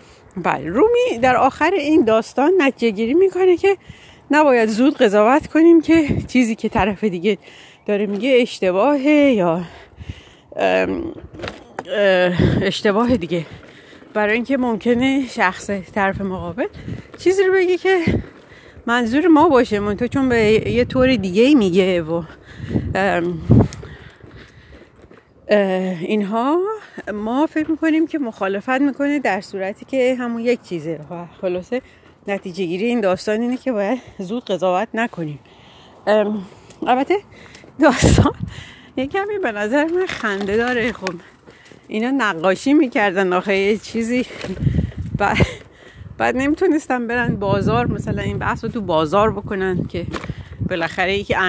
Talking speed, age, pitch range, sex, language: 120 wpm, 40-59, 195-270 Hz, female, Persian